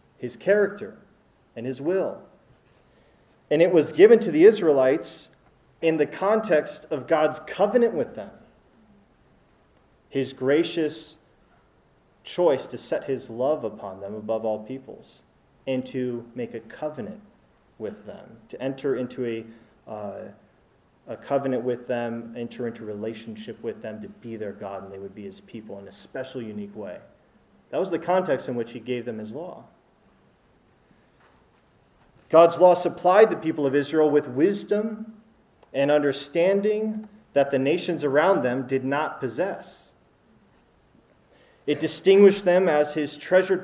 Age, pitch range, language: 40-59, 125-180 Hz, English